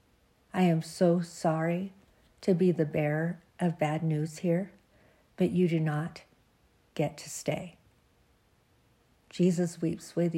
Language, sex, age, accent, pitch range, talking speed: English, female, 50-69, American, 160-185 Hz, 125 wpm